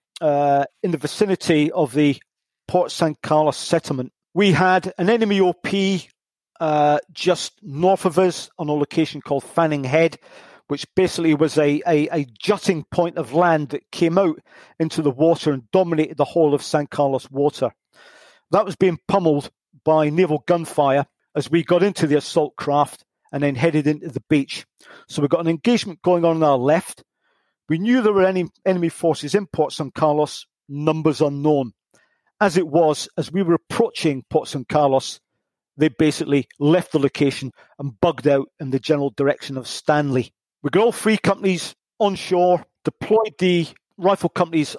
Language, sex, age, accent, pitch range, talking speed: English, male, 50-69, British, 145-180 Hz, 170 wpm